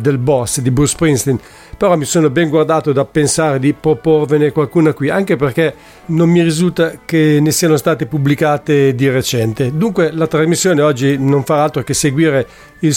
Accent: Italian